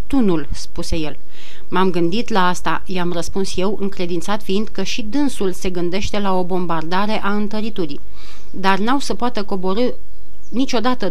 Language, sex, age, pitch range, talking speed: Romanian, female, 30-49, 185-235 Hz, 150 wpm